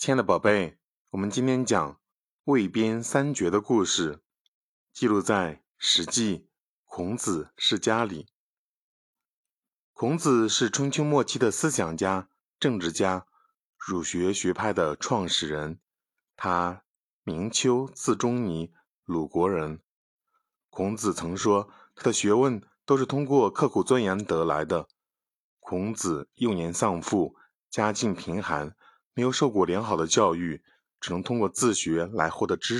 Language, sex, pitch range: Chinese, male, 85-120 Hz